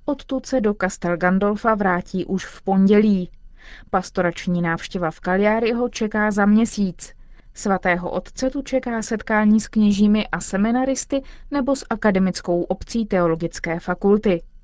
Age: 30-49